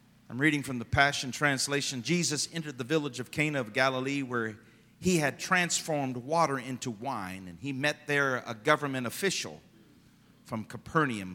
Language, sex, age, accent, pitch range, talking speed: English, male, 50-69, American, 115-165 Hz, 160 wpm